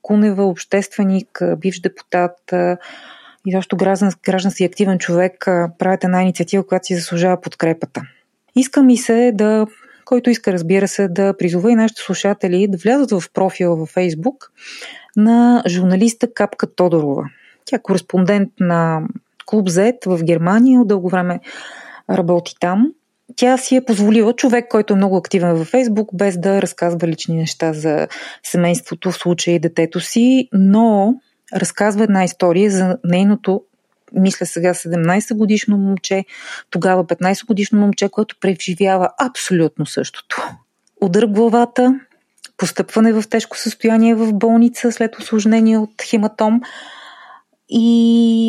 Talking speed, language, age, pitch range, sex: 130 wpm, Bulgarian, 30-49, 180-225 Hz, female